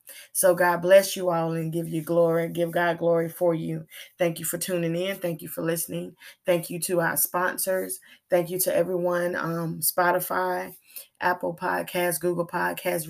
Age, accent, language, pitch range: 20-39, American, English, 165-185 Hz